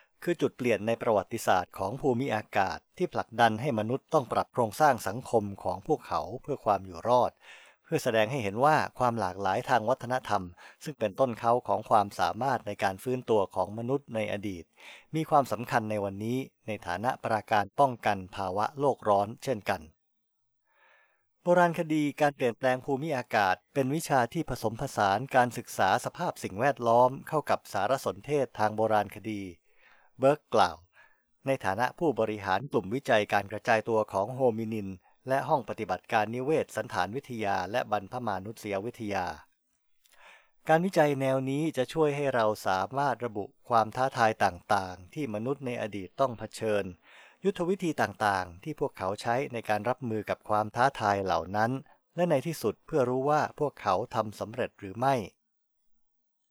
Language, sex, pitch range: English, male, 105-135 Hz